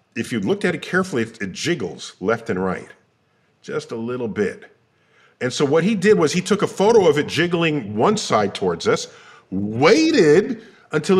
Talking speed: 180 wpm